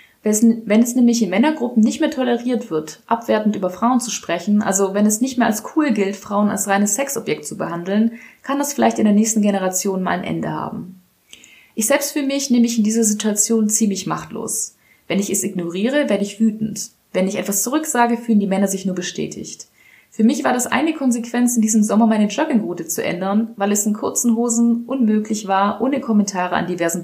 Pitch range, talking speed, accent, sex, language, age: 190-235 Hz, 200 wpm, German, female, German, 20-39